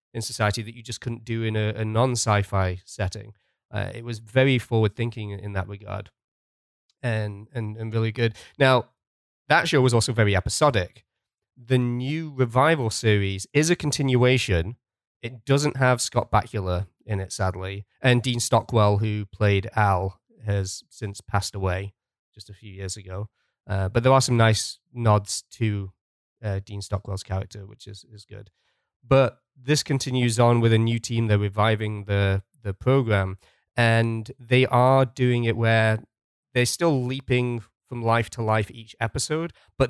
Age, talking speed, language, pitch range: 20-39, 160 wpm, English, 105-125 Hz